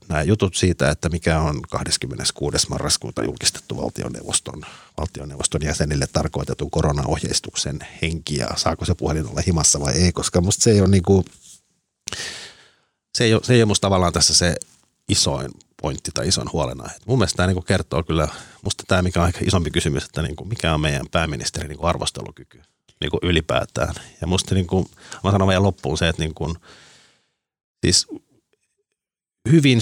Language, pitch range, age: Finnish, 75-100 Hz, 50-69